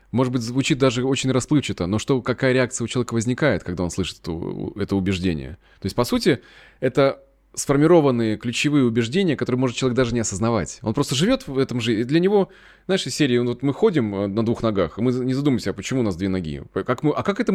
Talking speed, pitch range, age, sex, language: 220 wpm, 110-140 Hz, 20-39, male, Russian